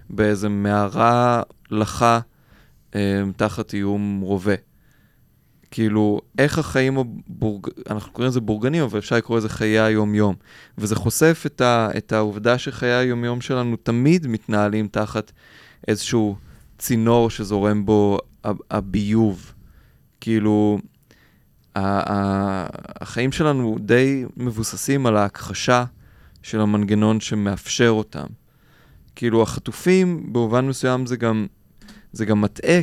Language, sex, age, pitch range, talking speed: Hebrew, male, 20-39, 105-120 Hz, 105 wpm